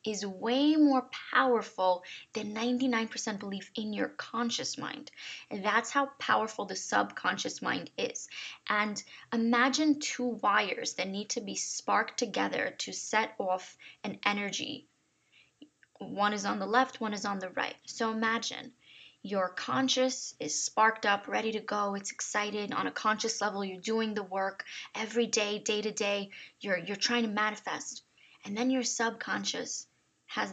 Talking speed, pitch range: 155 wpm, 200-245 Hz